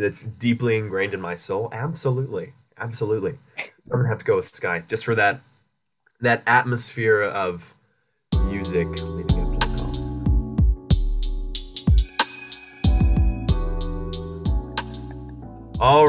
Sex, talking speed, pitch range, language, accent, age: male, 110 wpm, 110-150 Hz, English, American, 20-39